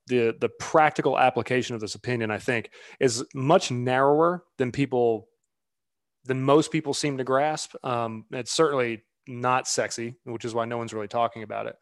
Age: 20-39